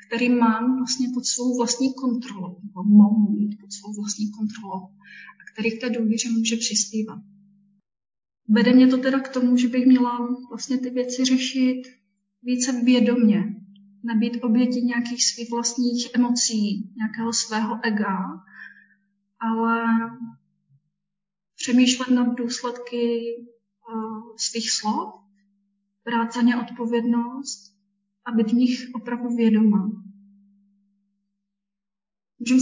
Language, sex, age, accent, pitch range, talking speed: Czech, female, 30-49, native, 210-245 Hz, 110 wpm